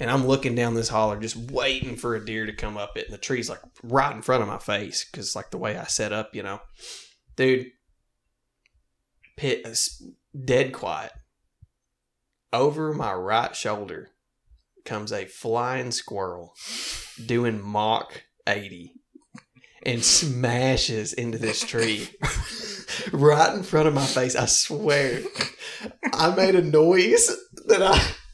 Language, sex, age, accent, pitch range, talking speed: English, male, 20-39, American, 130-210 Hz, 145 wpm